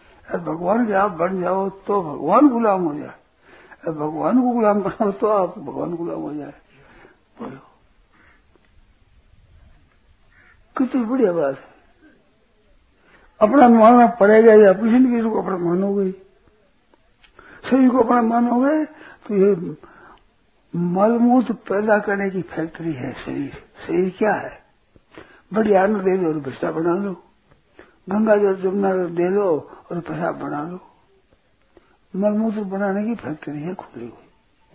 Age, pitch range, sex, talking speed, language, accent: 60-79, 170-220 Hz, male, 130 wpm, Hindi, native